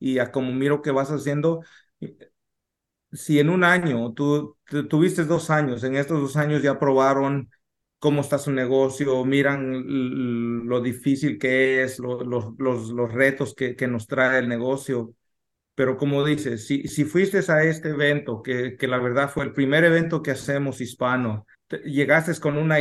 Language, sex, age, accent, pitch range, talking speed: English, male, 40-59, Mexican, 130-160 Hz, 170 wpm